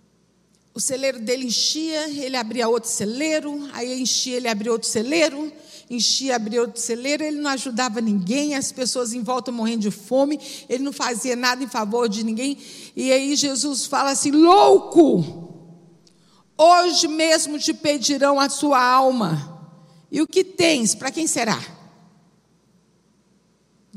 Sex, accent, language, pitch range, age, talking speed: female, Brazilian, Portuguese, 195-265 Hz, 50-69, 145 wpm